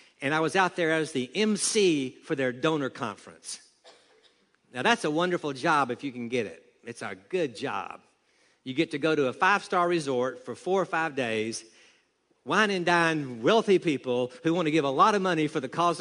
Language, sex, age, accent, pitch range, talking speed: English, male, 60-79, American, 130-175 Hz, 205 wpm